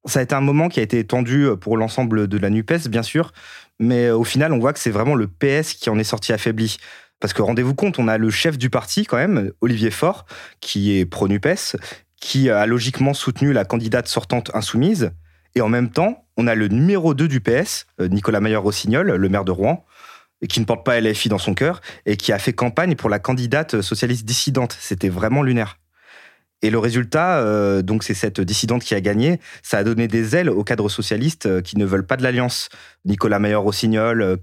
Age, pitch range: 30-49, 100-125 Hz